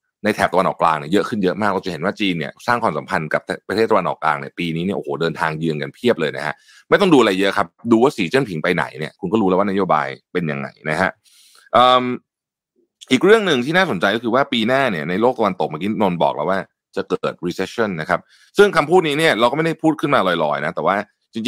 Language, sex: Thai, male